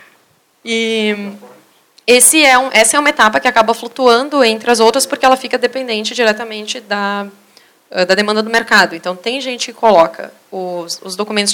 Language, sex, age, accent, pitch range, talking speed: Portuguese, female, 20-39, Brazilian, 205-270 Hz, 165 wpm